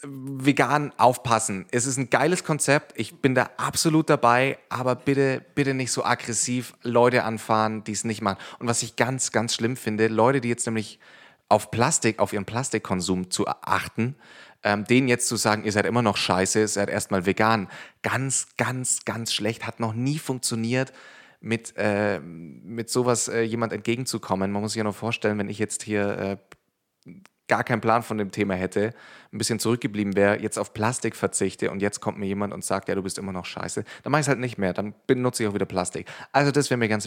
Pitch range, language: 105-130 Hz, German